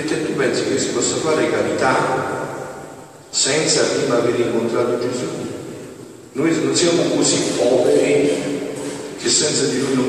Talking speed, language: 135 wpm, Italian